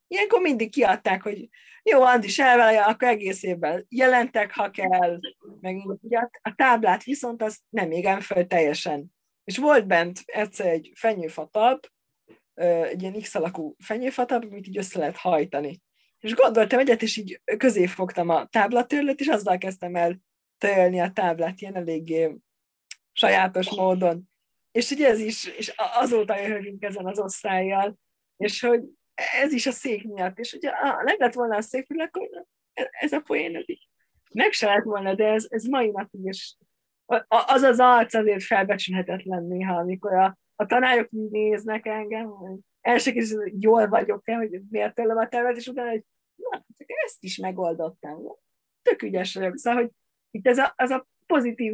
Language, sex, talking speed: Hungarian, female, 160 wpm